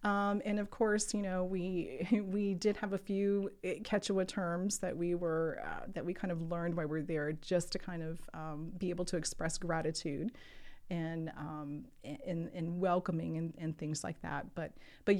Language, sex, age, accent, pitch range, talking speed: English, female, 30-49, American, 160-190 Hz, 195 wpm